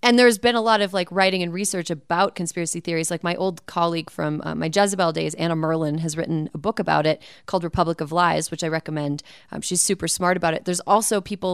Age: 30-49